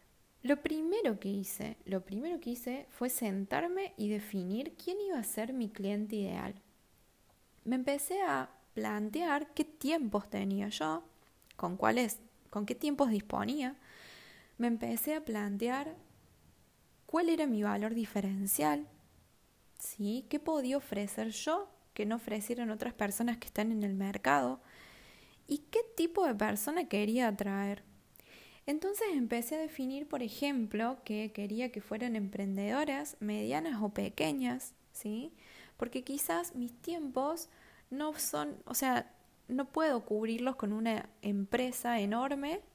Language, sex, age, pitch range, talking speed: Spanish, female, 20-39, 210-285 Hz, 125 wpm